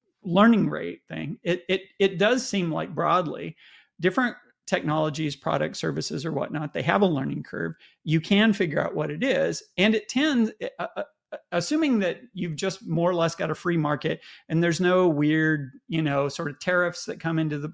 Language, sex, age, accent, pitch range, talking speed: English, male, 40-59, American, 160-215 Hz, 195 wpm